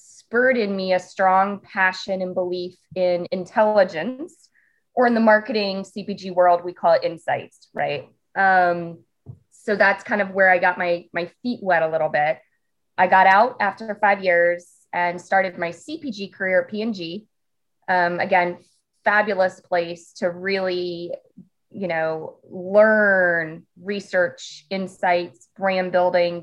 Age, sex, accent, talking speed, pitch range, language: 20-39, female, American, 140 wpm, 175-205 Hz, English